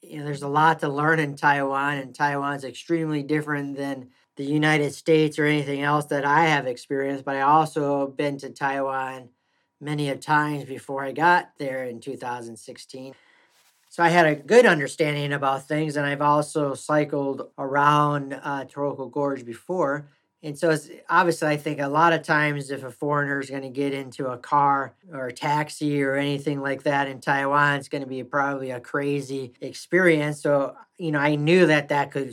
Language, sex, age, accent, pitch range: Chinese, male, 40-59, American, 135-150 Hz